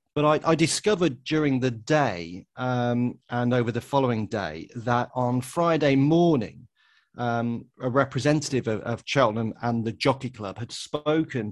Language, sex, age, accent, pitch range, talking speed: English, male, 30-49, British, 120-140 Hz, 150 wpm